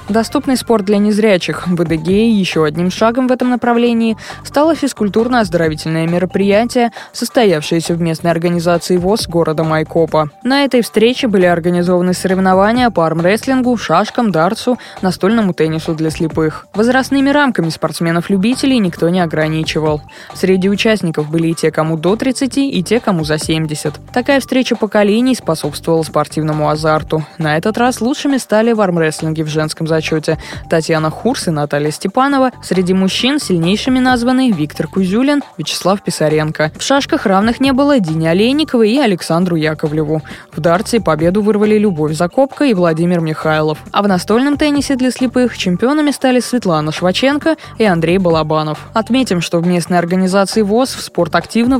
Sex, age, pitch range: female, 20-39, 165-235 Hz